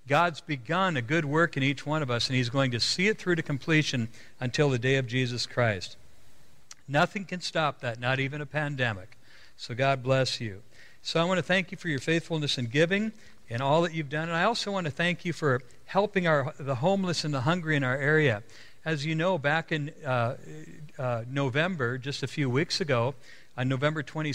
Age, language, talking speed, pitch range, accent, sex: 60-79, English, 210 wpm, 130-155 Hz, American, male